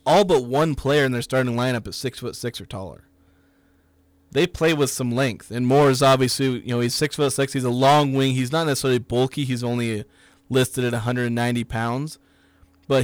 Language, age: English, 30-49